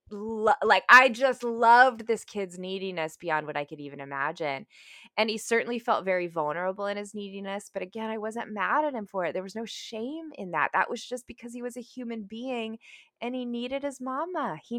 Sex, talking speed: female, 210 wpm